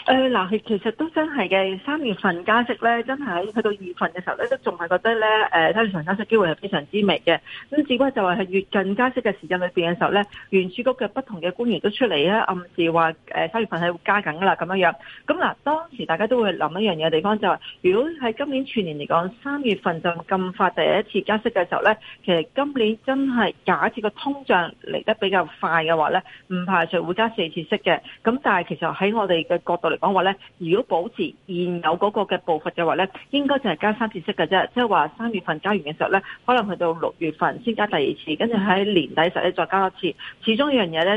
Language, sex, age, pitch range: Chinese, female, 40-59, 170-225 Hz